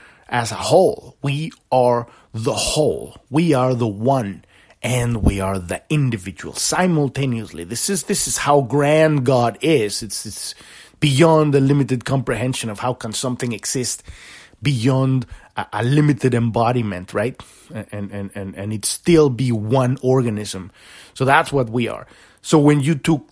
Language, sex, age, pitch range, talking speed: English, male, 30-49, 115-150 Hz, 155 wpm